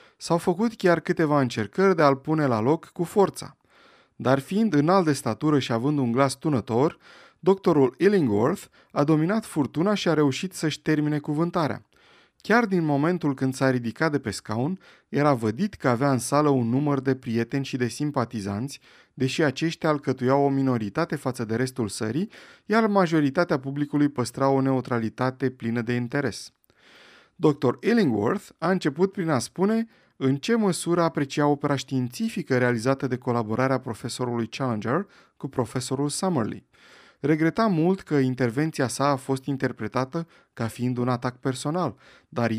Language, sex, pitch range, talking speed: Romanian, male, 130-165 Hz, 150 wpm